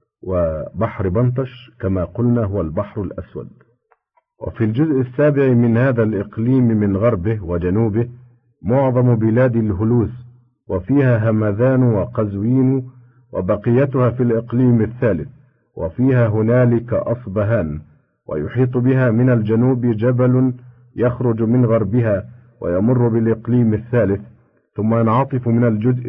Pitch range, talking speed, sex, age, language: 105-125 Hz, 100 wpm, male, 50-69, Arabic